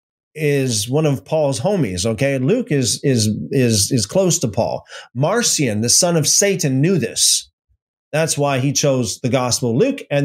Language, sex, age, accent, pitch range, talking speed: English, male, 30-49, American, 130-180 Hz, 175 wpm